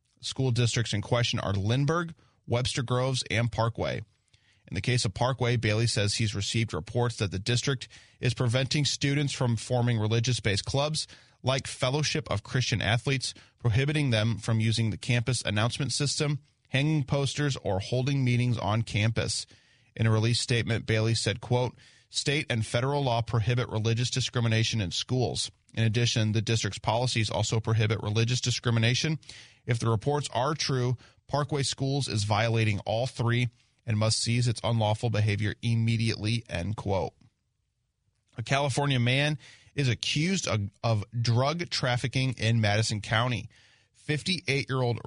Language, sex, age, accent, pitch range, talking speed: English, male, 30-49, American, 110-130 Hz, 145 wpm